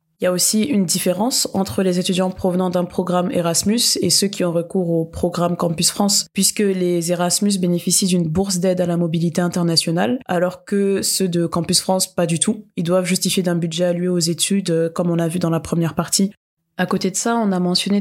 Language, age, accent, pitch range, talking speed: French, 20-39, French, 175-195 Hz, 215 wpm